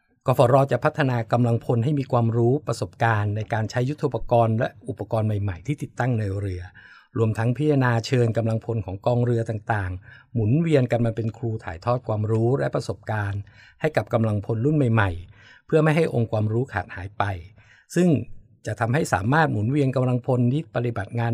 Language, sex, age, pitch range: Thai, male, 60-79, 105-130 Hz